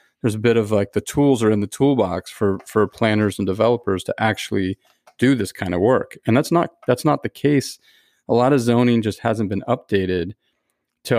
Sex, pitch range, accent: male, 100-120 Hz, American